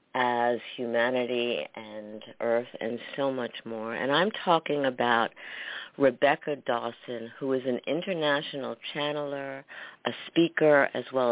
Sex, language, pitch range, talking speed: female, English, 125-160 Hz, 120 wpm